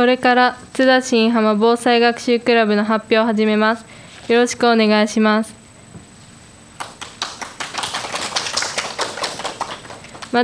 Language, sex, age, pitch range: Japanese, female, 10-29, 210-235 Hz